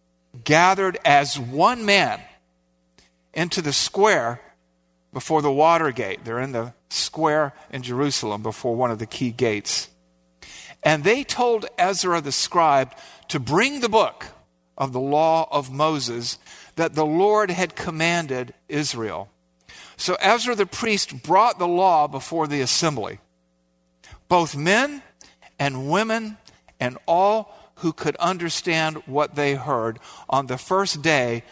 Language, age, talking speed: English, 50-69, 135 wpm